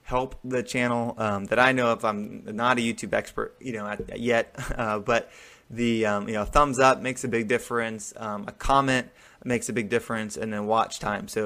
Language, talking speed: English, 210 wpm